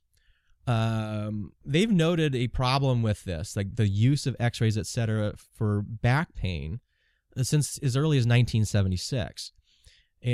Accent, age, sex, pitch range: American, 20-39, male, 105-140 Hz